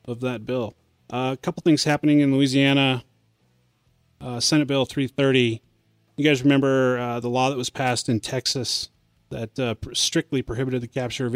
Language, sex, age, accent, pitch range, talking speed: English, male, 30-49, American, 115-135 Hz, 170 wpm